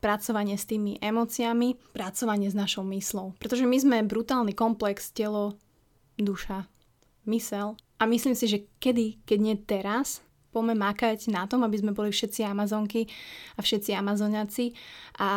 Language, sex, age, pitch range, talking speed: Slovak, female, 20-39, 200-225 Hz, 145 wpm